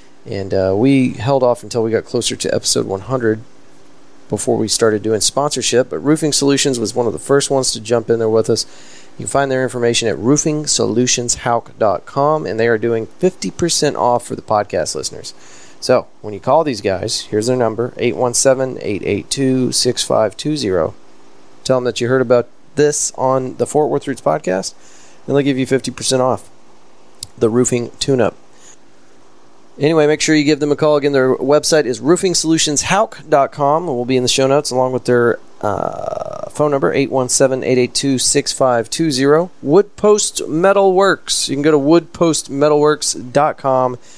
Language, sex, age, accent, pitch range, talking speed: English, male, 30-49, American, 120-150 Hz, 155 wpm